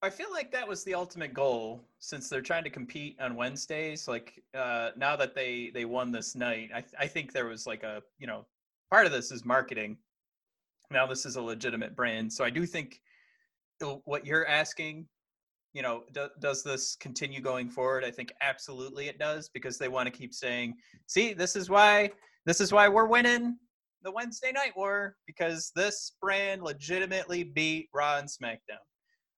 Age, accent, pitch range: 30-49, American, 135-195 Hz